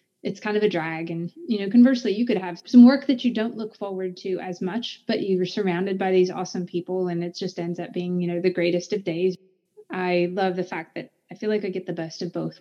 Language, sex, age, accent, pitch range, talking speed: English, female, 20-39, American, 175-205 Hz, 260 wpm